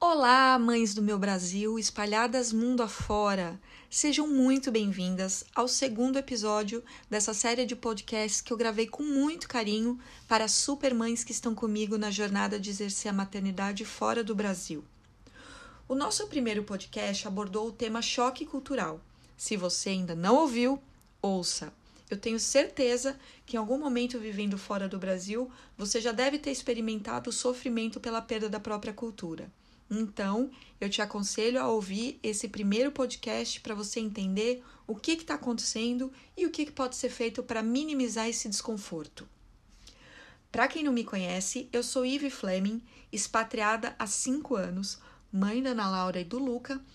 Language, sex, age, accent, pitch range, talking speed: Portuguese, female, 40-59, Brazilian, 210-255 Hz, 155 wpm